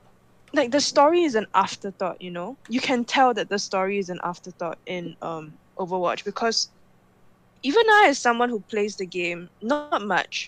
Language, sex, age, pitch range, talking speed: English, female, 10-29, 185-230 Hz, 180 wpm